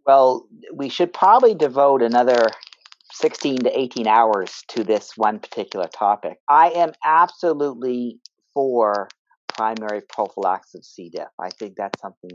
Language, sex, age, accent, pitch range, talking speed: English, male, 40-59, American, 105-145 Hz, 135 wpm